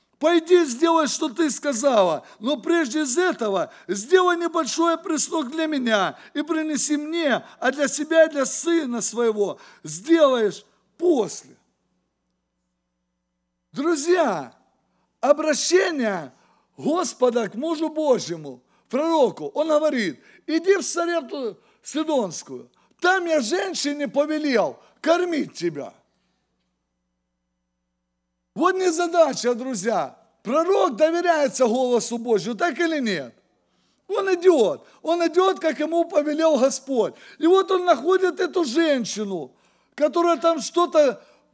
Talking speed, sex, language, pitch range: 105 wpm, male, English, 235-335 Hz